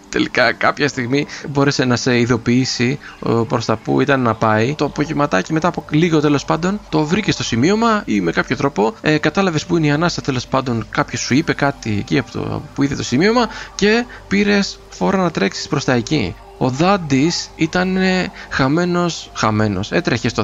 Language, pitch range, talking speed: Greek, 120-160 Hz, 185 wpm